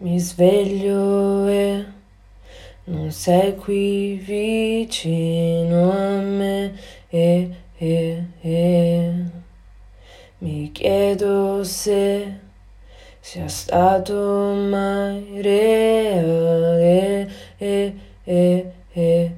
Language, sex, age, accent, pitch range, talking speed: Italian, female, 20-39, native, 170-200 Hz, 70 wpm